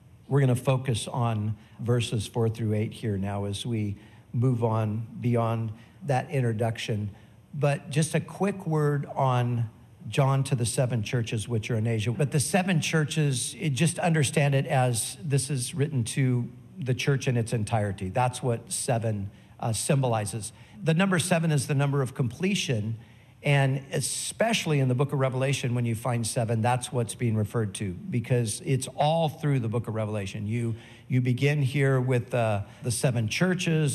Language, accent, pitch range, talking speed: English, American, 115-145 Hz, 170 wpm